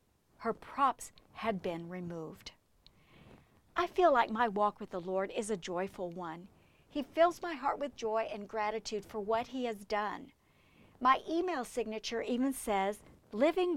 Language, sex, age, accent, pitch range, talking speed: English, female, 50-69, American, 220-305 Hz, 155 wpm